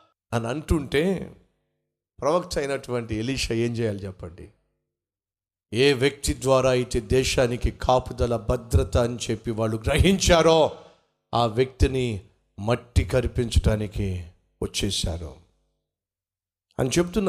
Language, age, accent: Telugu, 50-69, native